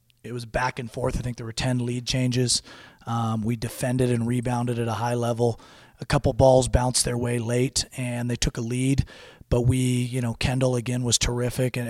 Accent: American